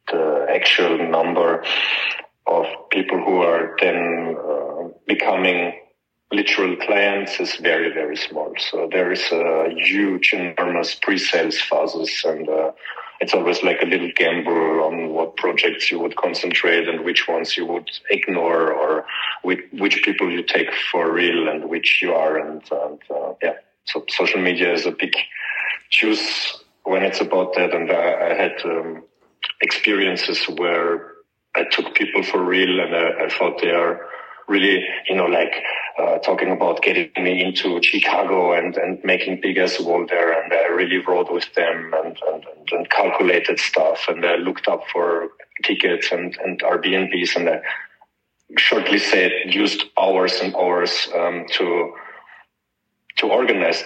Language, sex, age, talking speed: English, male, 30-49, 155 wpm